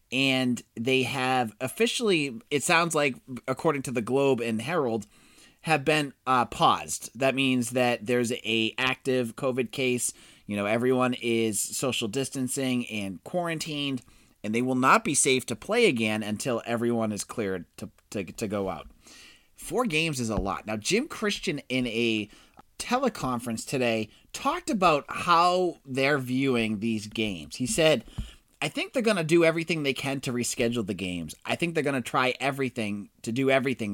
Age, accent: 30-49, American